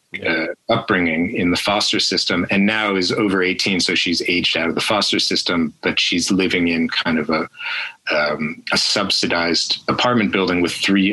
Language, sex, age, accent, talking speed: English, male, 30-49, American, 175 wpm